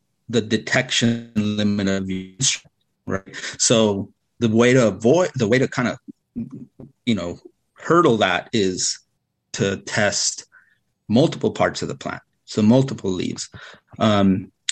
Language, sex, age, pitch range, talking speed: English, male, 30-49, 100-125 Hz, 130 wpm